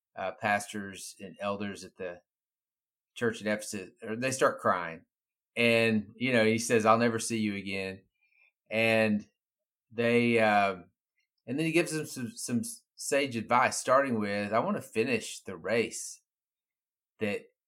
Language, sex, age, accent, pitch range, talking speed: English, male, 30-49, American, 100-120 Hz, 150 wpm